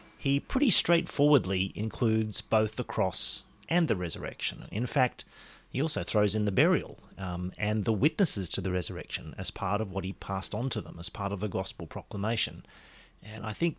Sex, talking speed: male, 185 wpm